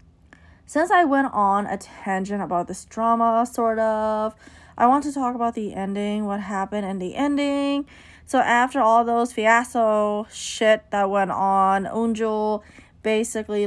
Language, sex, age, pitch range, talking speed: English, female, 20-39, 195-230 Hz, 150 wpm